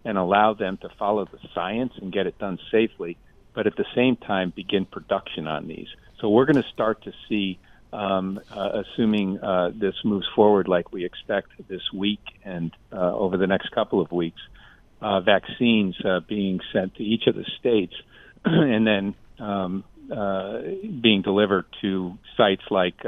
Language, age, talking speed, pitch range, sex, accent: English, 50-69, 170 wpm, 95-115 Hz, male, American